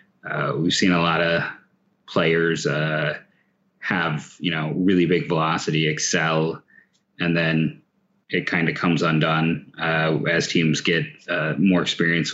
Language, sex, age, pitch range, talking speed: English, male, 30-49, 80-90 Hz, 140 wpm